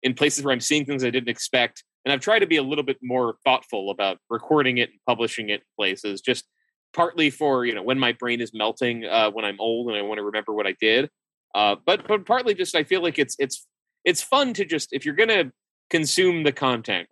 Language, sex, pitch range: English, male, 115-145 Hz